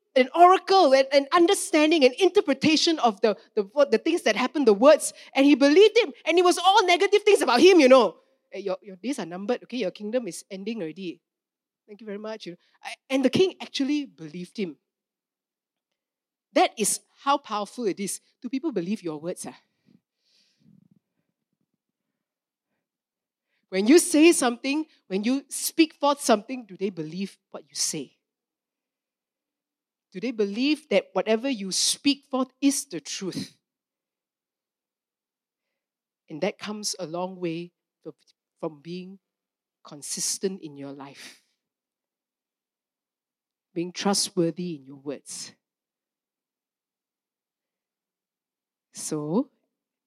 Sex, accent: female, Malaysian